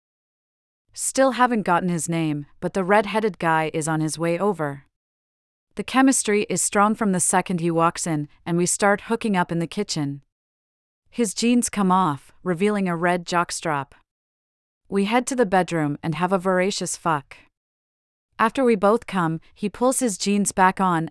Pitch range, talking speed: 160-205 Hz, 170 wpm